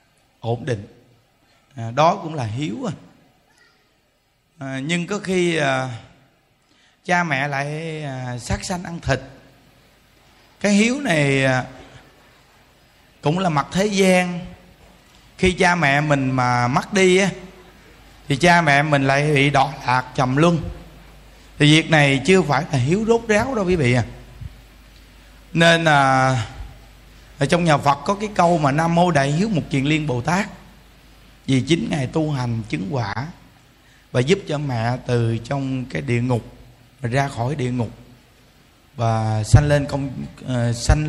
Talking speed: 150 wpm